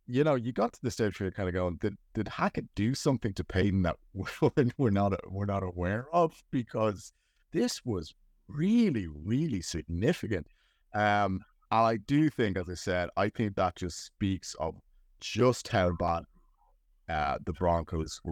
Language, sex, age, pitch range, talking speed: English, male, 30-49, 85-105 Hz, 170 wpm